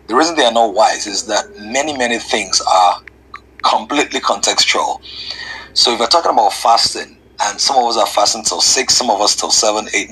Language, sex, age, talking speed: English, male, 30-49, 200 wpm